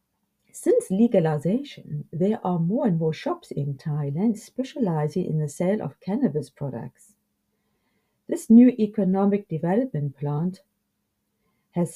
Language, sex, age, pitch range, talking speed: English, female, 50-69, 145-195 Hz, 115 wpm